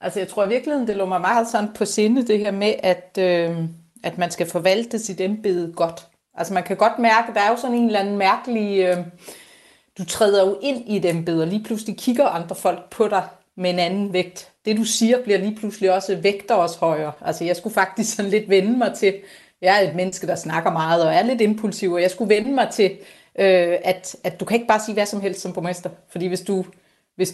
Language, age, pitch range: Danish, 30-49, 180-225 Hz